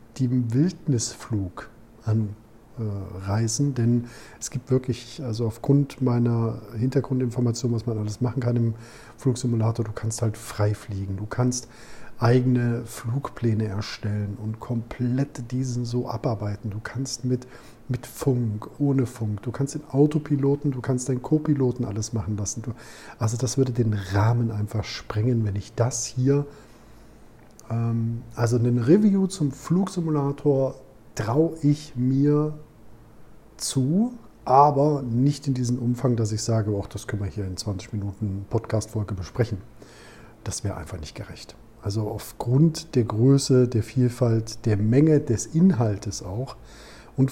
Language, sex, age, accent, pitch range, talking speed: German, male, 50-69, German, 110-135 Hz, 135 wpm